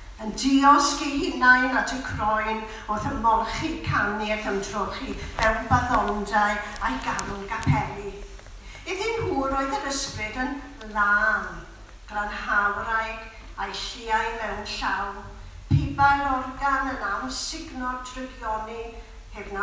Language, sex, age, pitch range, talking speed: English, female, 50-69, 220-305 Hz, 115 wpm